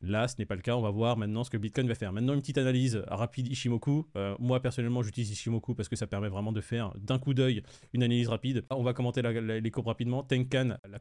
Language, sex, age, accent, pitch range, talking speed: French, male, 20-39, French, 110-130 Hz, 265 wpm